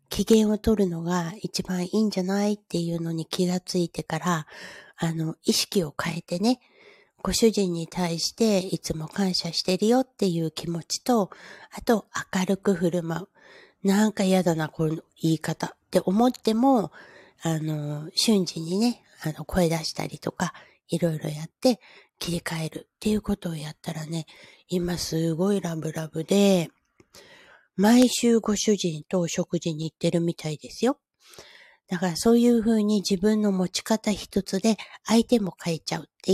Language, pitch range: Japanese, 165-220 Hz